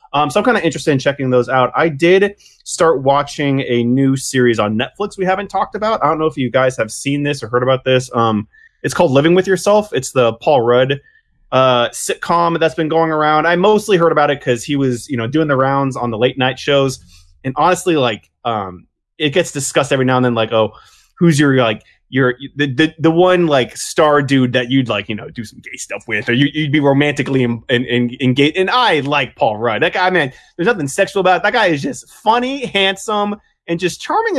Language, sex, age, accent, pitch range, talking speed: English, male, 20-39, American, 125-170 Hz, 235 wpm